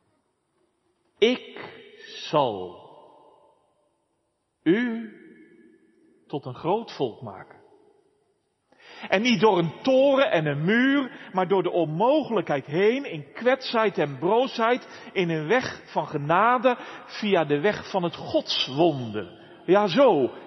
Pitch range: 170-275 Hz